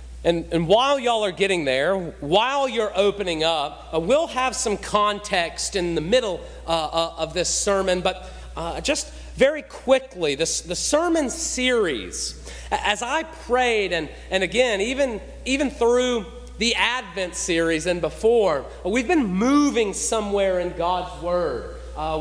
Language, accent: English, American